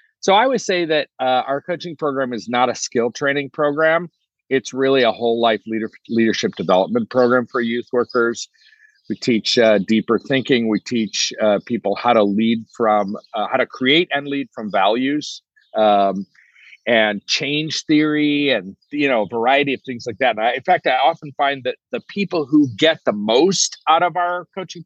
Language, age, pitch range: English, 50-69, 110-155 Hz